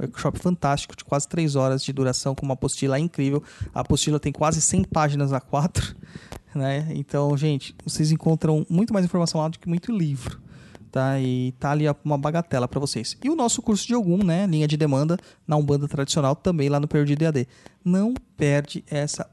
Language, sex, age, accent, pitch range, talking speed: Portuguese, male, 20-39, Brazilian, 140-170 Hz, 195 wpm